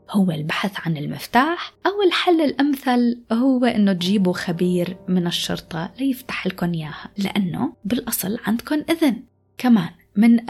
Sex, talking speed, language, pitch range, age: female, 125 wpm, Arabic, 175-240 Hz, 20-39